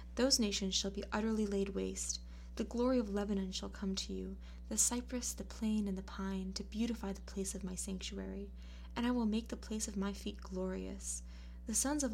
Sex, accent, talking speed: female, American, 210 wpm